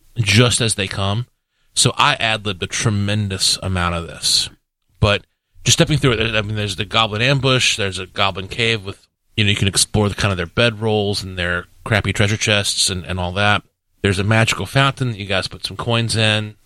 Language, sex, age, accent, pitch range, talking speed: English, male, 30-49, American, 95-115 Hz, 215 wpm